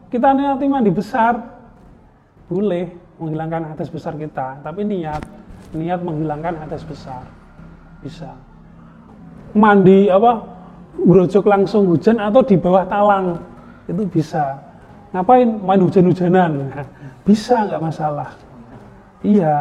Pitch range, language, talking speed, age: 165-220 Hz, Indonesian, 105 wpm, 30-49